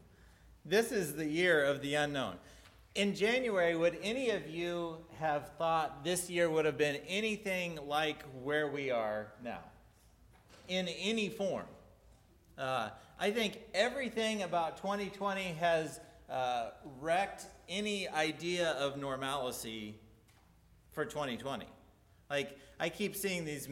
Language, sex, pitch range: English, male, 140-185 Hz